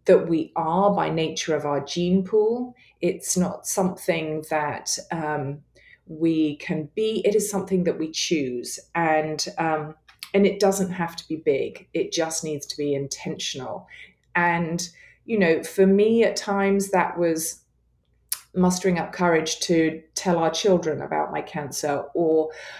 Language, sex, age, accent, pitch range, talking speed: English, female, 30-49, British, 160-210 Hz, 155 wpm